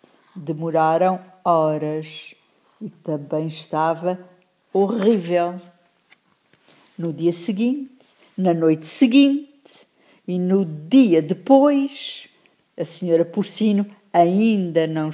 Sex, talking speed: female, 85 wpm